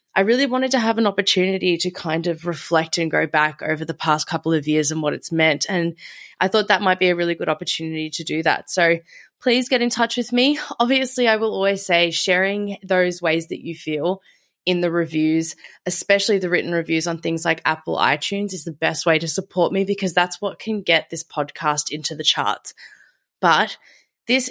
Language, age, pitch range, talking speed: English, 20-39, 165-220 Hz, 210 wpm